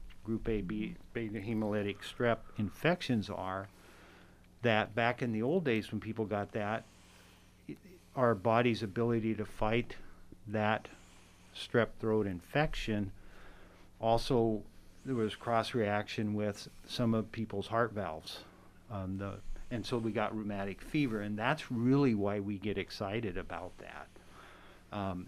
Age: 50-69